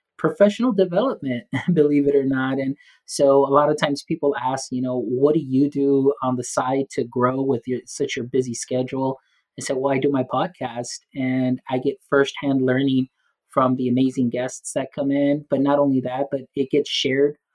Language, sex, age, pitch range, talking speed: English, male, 30-49, 125-140 Hz, 200 wpm